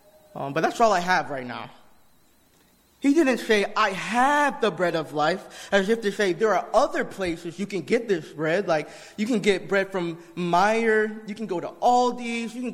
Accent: American